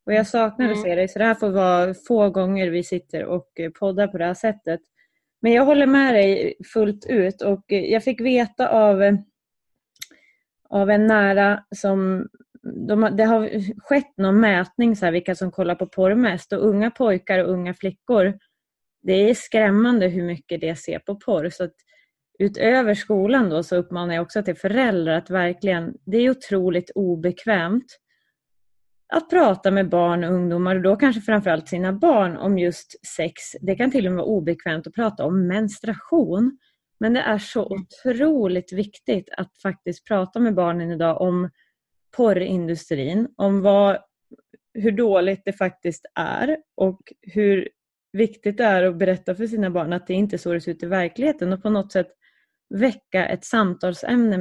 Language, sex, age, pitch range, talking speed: English, female, 20-39, 180-225 Hz, 170 wpm